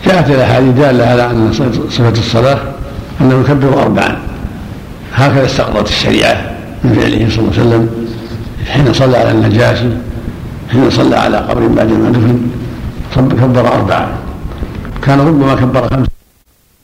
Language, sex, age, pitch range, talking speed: Arabic, male, 70-89, 80-125 Hz, 130 wpm